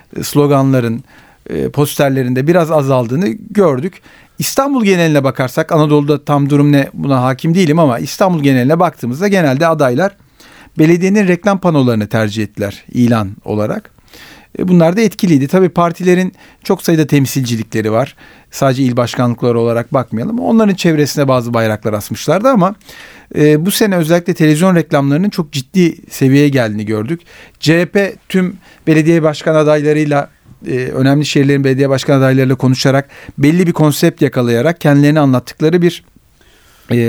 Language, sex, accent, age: Turkish, male, native, 40-59